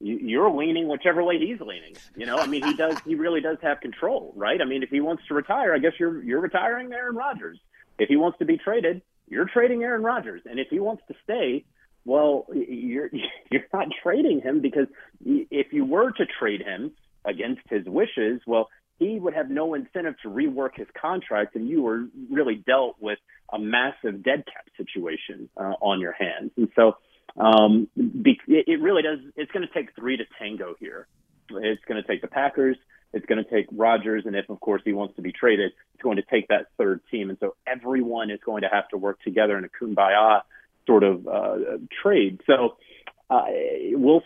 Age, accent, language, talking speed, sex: 30-49, American, English, 205 wpm, male